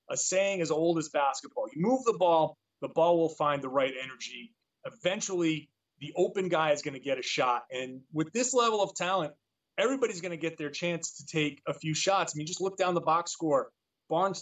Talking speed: 220 wpm